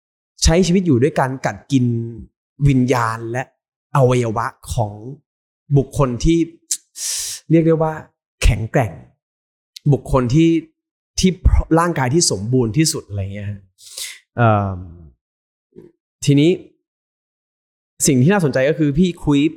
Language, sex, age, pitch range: Thai, male, 20-39, 110-145 Hz